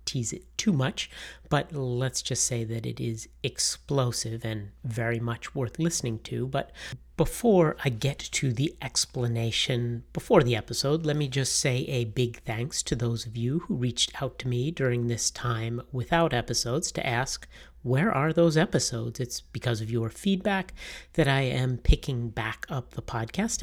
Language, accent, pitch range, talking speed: English, American, 115-140 Hz, 175 wpm